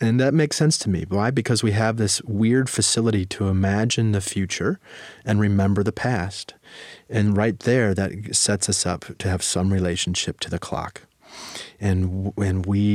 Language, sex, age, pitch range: English, male, 30-49, 95-110 Hz